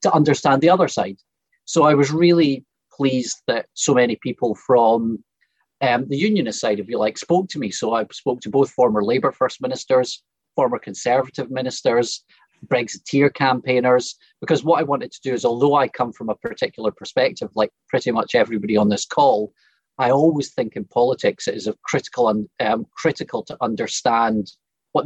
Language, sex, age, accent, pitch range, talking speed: English, male, 30-49, British, 115-140 Hz, 180 wpm